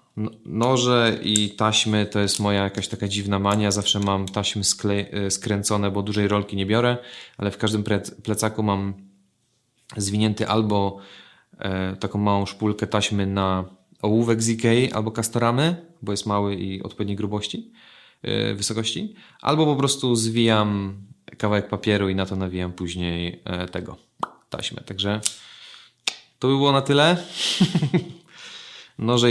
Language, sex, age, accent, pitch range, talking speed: Polish, male, 30-49, native, 95-110 Hz, 135 wpm